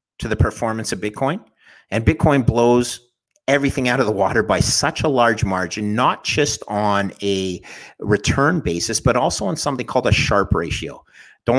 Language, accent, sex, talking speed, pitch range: English, American, male, 170 wpm, 100-135 Hz